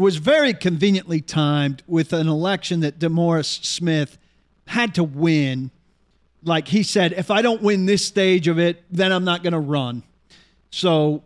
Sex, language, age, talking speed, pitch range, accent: male, English, 40-59, 165 wpm, 160-200 Hz, American